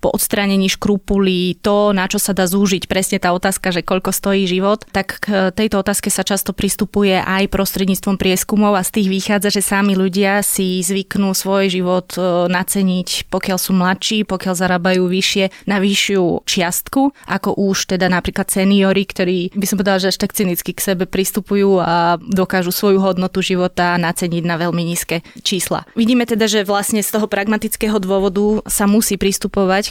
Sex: female